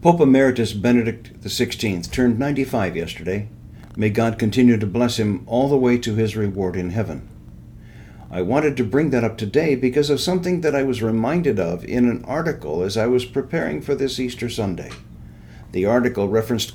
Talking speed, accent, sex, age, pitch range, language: 180 wpm, American, male, 60-79, 105-140 Hz, English